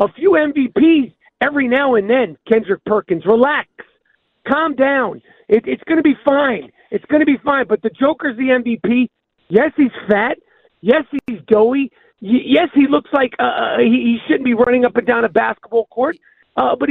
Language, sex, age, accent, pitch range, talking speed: English, male, 40-59, American, 225-280 Hz, 185 wpm